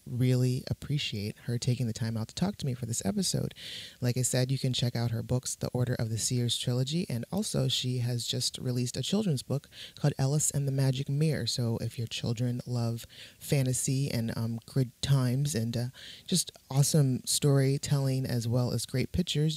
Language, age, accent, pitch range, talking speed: English, 30-49, American, 115-135 Hz, 195 wpm